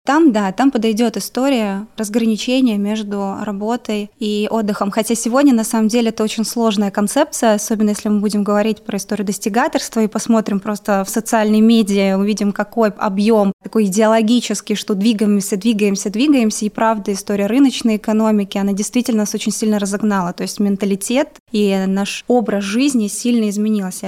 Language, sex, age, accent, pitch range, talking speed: Russian, female, 20-39, native, 205-230 Hz, 155 wpm